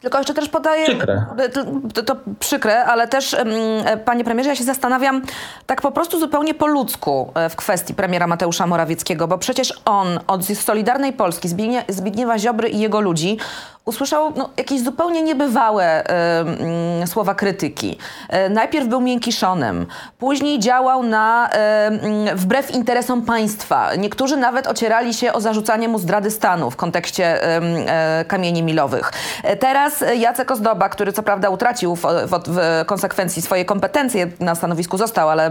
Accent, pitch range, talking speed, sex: native, 180-265 Hz, 140 wpm, female